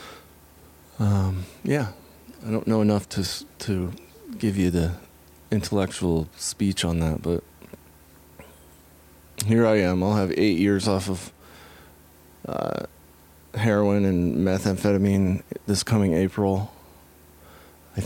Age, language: 30-49, English